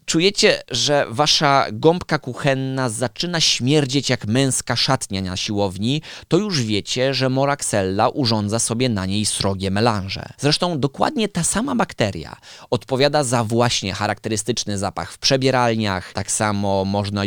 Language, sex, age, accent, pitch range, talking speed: Polish, male, 20-39, native, 110-145 Hz, 130 wpm